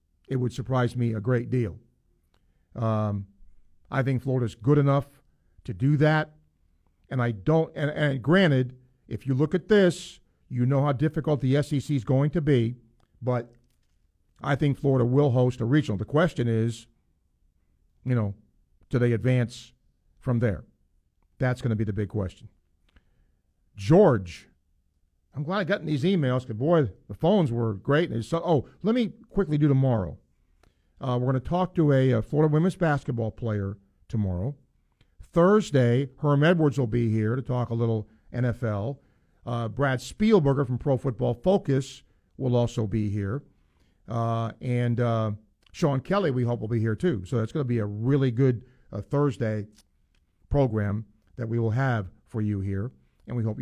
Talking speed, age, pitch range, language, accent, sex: 165 wpm, 50-69, 100-140 Hz, English, American, male